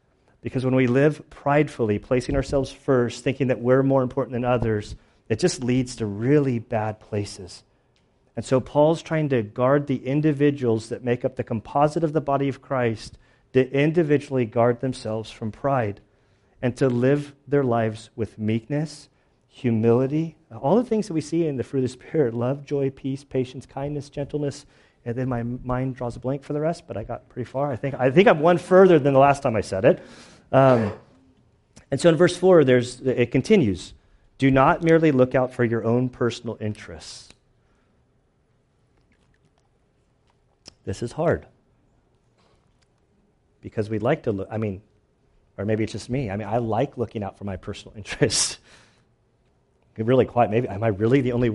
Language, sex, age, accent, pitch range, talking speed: English, male, 40-59, American, 115-145 Hz, 180 wpm